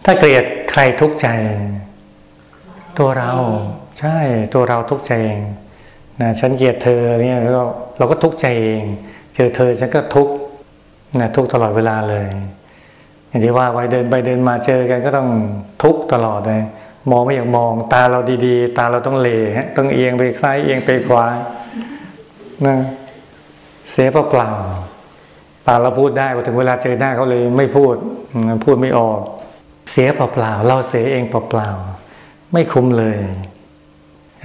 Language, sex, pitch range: Thai, male, 105-130 Hz